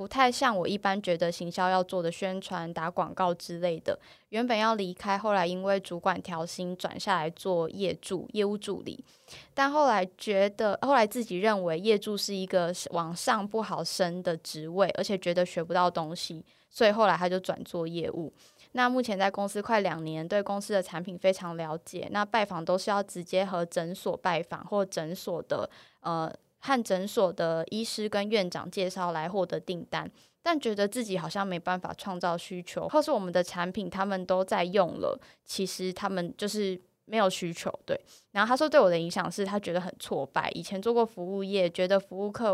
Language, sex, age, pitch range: Chinese, female, 10-29, 175-205 Hz